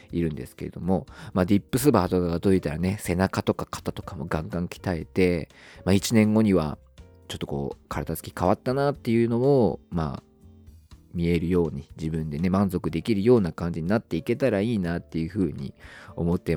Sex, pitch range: male, 80-105 Hz